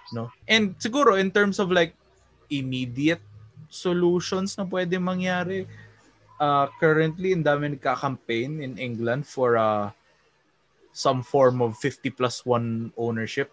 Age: 20-39